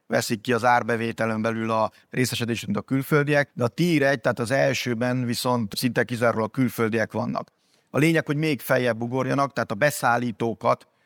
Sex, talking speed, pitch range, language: male, 175 wpm, 115-140 Hz, Hungarian